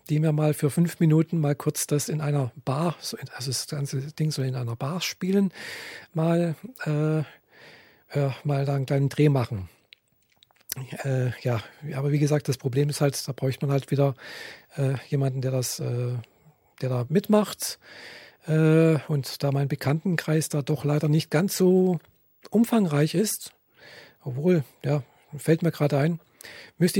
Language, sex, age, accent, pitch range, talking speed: German, male, 50-69, German, 145-180 Hz, 160 wpm